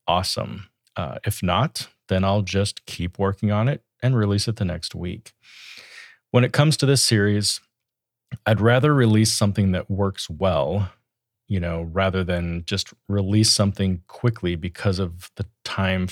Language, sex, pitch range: English, male, 95-115 Hz